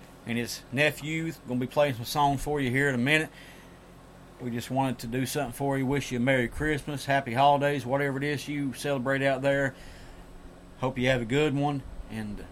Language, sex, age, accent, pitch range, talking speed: English, male, 40-59, American, 120-145 Hz, 210 wpm